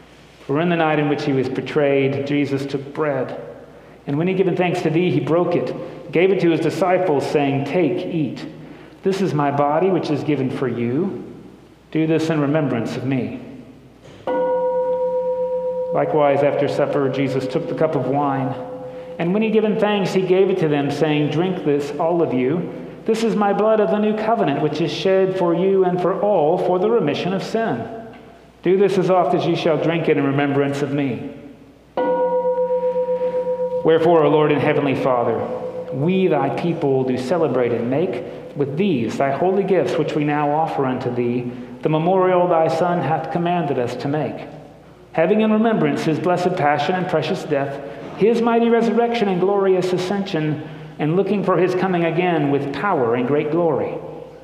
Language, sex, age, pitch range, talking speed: English, male, 40-59, 145-195 Hz, 180 wpm